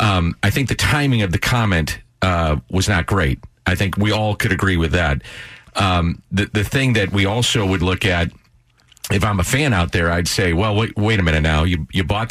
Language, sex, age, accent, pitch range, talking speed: English, male, 40-59, American, 90-110 Hz, 230 wpm